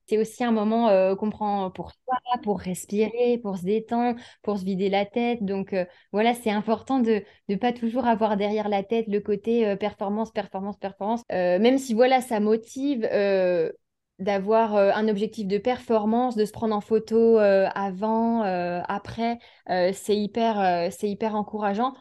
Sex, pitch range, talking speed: female, 195-230 Hz, 185 wpm